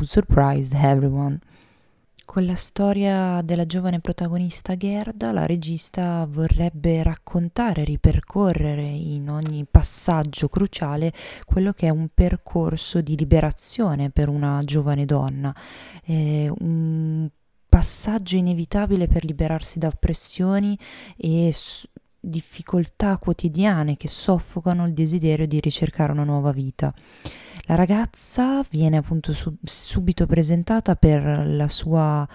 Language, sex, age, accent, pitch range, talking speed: Italian, female, 20-39, native, 150-175 Hz, 110 wpm